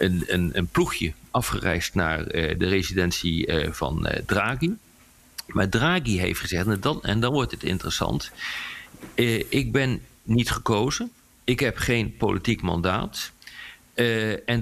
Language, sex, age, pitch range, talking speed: Dutch, male, 50-69, 95-130 Hz, 150 wpm